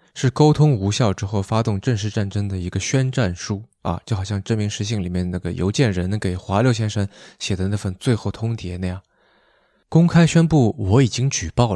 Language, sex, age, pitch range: Chinese, male, 20-39, 95-120 Hz